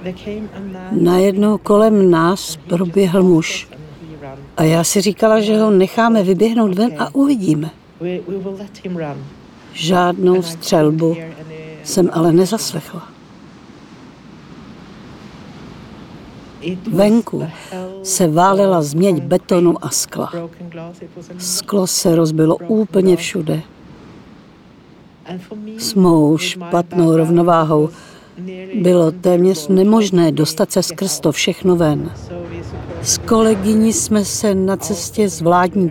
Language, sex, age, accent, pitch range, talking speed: Czech, female, 50-69, native, 160-195 Hz, 90 wpm